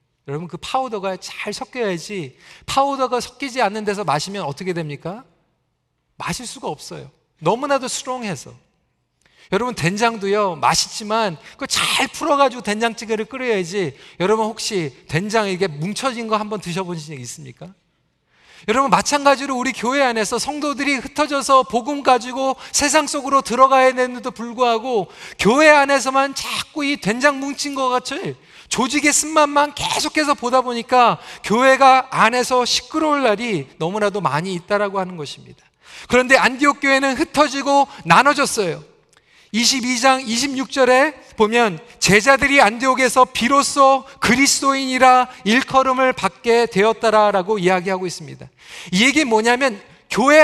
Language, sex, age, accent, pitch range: Korean, male, 40-59, native, 200-275 Hz